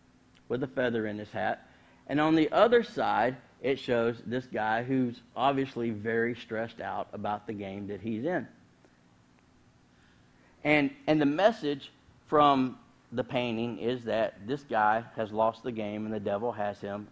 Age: 50-69